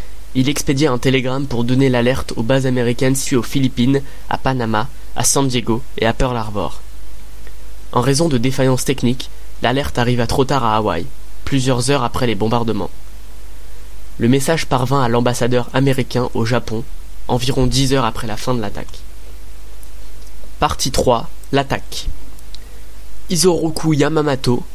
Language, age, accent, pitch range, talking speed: French, 20-39, French, 115-140 Hz, 145 wpm